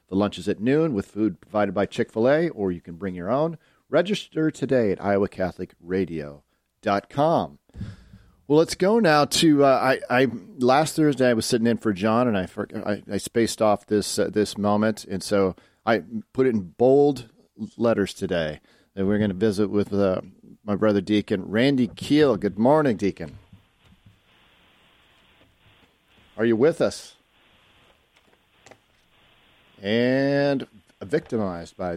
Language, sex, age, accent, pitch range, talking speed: English, male, 40-59, American, 100-135 Hz, 145 wpm